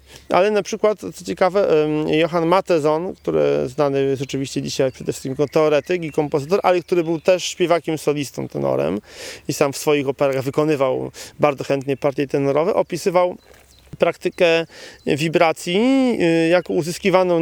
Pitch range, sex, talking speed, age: 145-190 Hz, male, 140 wpm, 40-59